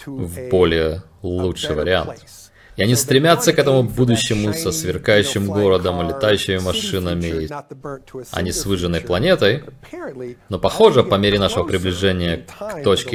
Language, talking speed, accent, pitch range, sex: Russian, 130 wpm, native, 95-130 Hz, male